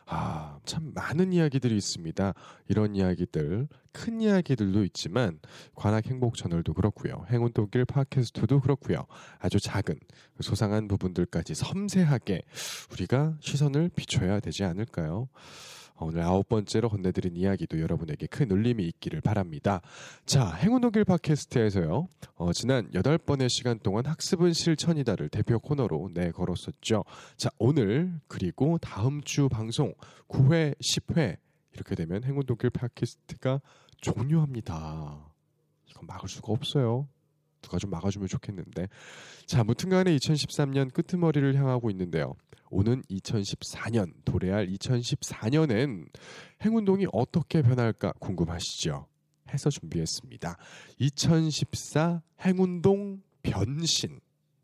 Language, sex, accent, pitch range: Korean, male, native, 100-150 Hz